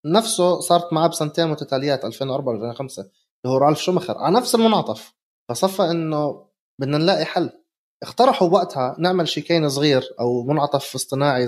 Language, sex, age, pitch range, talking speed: Arabic, male, 30-49, 140-200 Hz, 140 wpm